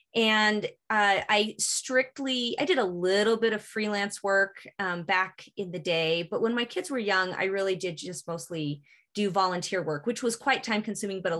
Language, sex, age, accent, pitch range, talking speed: English, female, 20-39, American, 180-225 Hz, 200 wpm